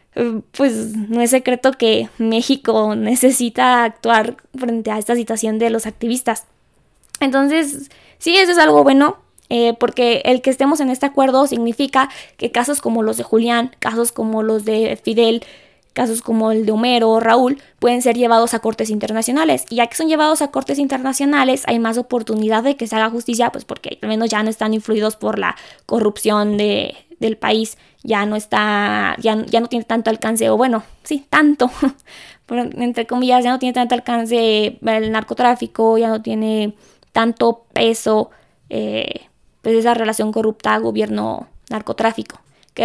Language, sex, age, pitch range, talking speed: Spanish, female, 20-39, 220-260 Hz, 170 wpm